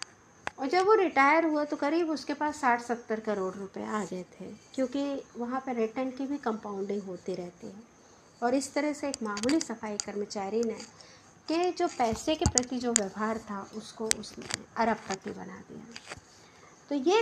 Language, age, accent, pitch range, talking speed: Hindi, 50-69, native, 215-295 Hz, 170 wpm